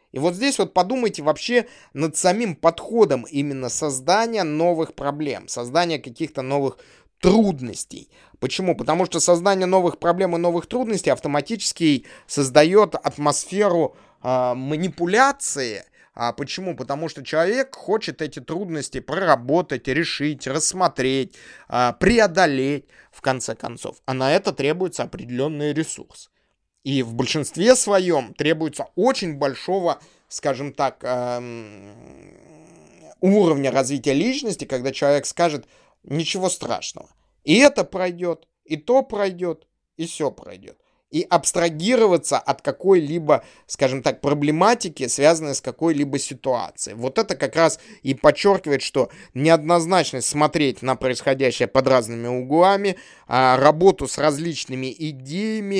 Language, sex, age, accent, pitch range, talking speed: Russian, male, 20-39, native, 135-185 Hz, 115 wpm